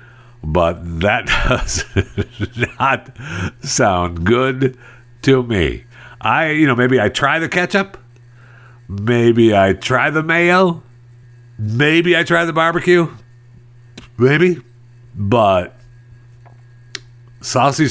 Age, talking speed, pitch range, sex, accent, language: 50-69, 95 wpm, 115-135 Hz, male, American, English